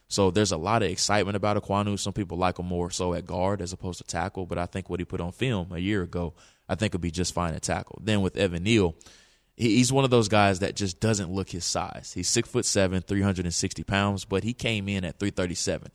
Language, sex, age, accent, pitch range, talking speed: English, male, 20-39, American, 90-100 Hz, 250 wpm